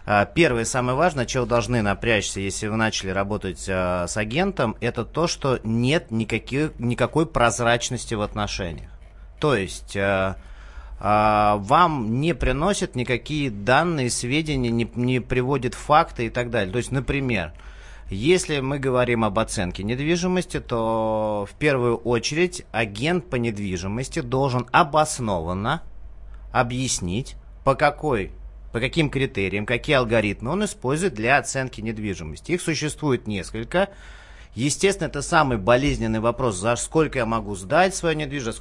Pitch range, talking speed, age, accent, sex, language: 110-150 Hz, 130 wpm, 30-49, native, male, Russian